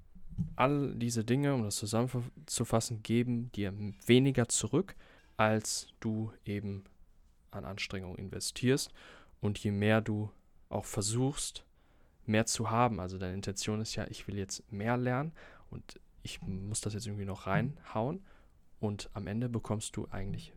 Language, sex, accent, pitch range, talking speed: German, male, German, 100-115 Hz, 145 wpm